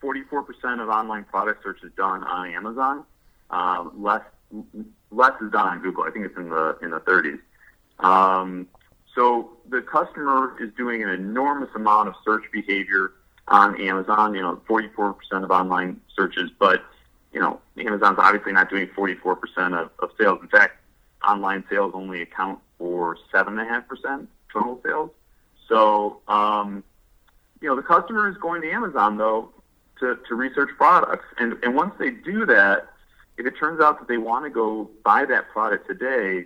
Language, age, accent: English, 40-59, American